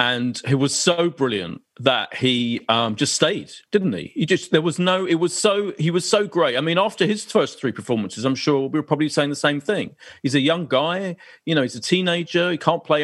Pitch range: 130-185 Hz